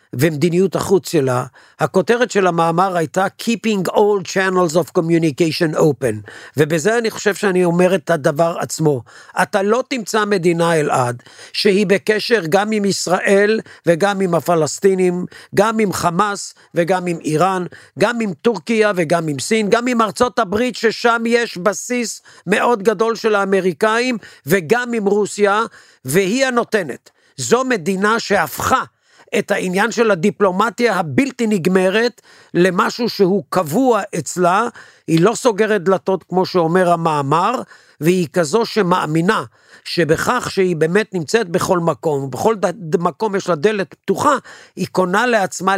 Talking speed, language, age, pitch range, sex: 130 wpm, Hebrew, 50-69, 170-220 Hz, male